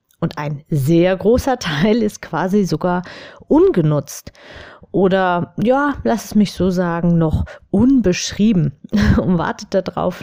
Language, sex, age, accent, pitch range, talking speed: German, female, 30-49, German, 180-250 Hz, 125 wpm